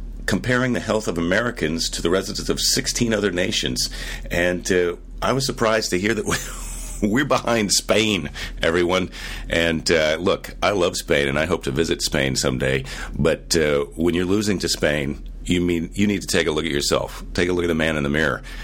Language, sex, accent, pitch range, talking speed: English, male, American, 85-110 Hz, 205 wpm